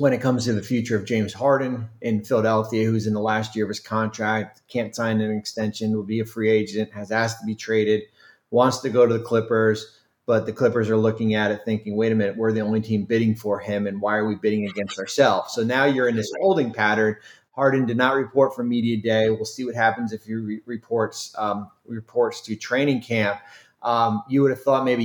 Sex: male